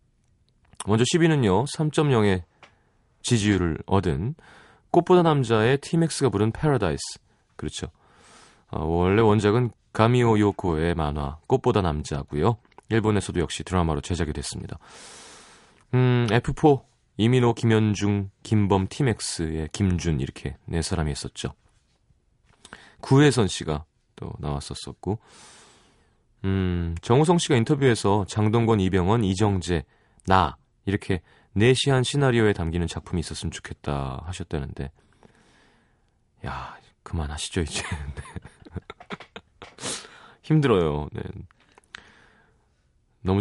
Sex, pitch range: male, 85-125 Hz